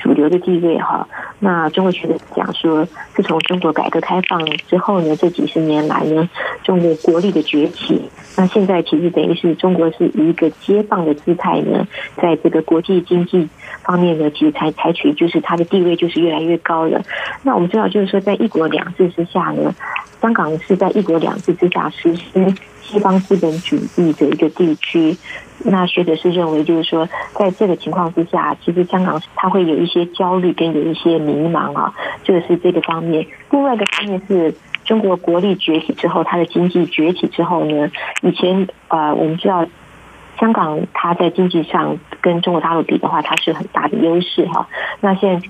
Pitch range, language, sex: 160-185 Hz, Chinese, female